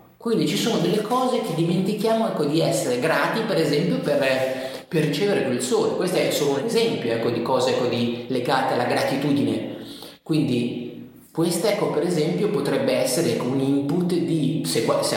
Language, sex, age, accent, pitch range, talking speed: Italian, male, 30-49, native, 135-195 Hz, 150 wpm